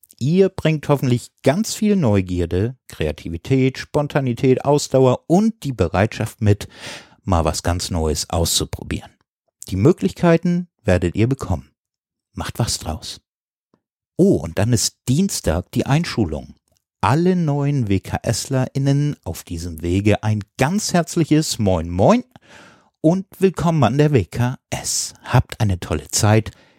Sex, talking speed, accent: male, 120 wpm, German